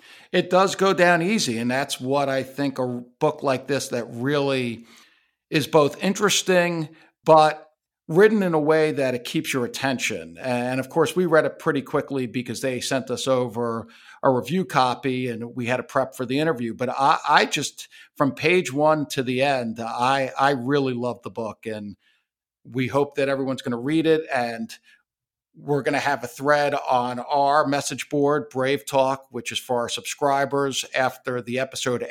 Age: 50-69